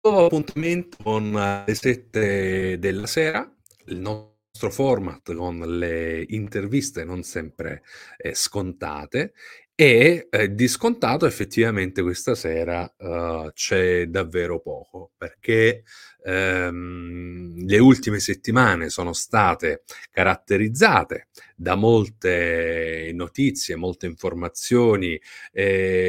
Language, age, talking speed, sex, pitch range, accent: Italian, 40-59, 95 wpm, male, 90-120 Hz, native